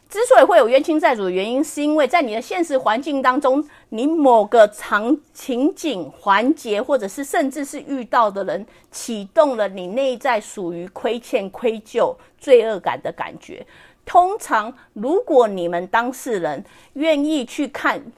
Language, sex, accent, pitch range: English, female, American, 195-275 Hz